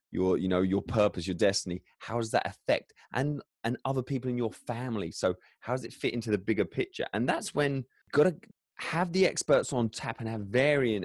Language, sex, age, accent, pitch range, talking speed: English, male, 20-39, British, 100-120 Hz, 215 wpm